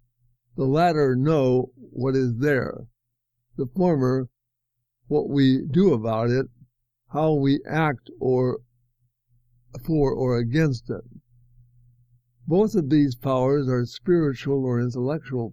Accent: American